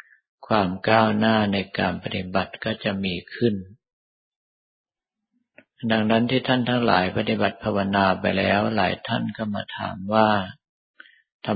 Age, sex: 50-69, male